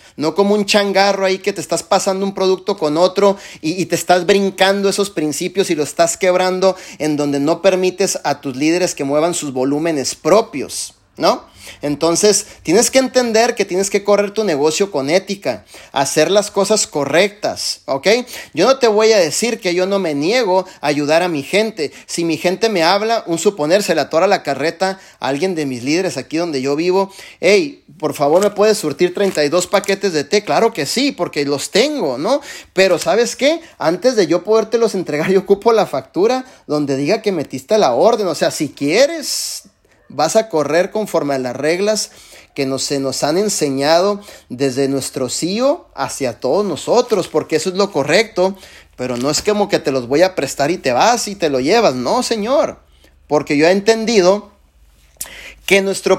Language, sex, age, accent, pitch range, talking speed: Spanish, male, 30-49, Mexican, 150-205 Hz, 190 wpm